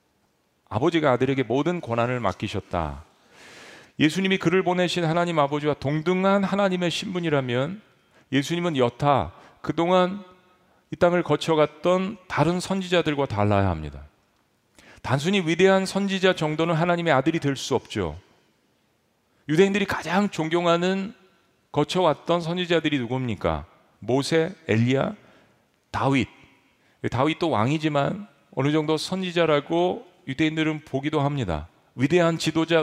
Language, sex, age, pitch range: Korean, male, 40-59, 135-180 Hz